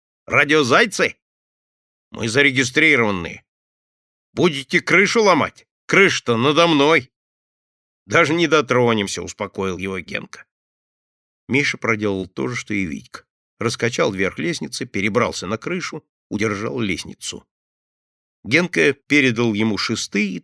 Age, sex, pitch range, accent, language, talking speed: 50-69, male, 105-150 Hz, native, Russian, 105 wpm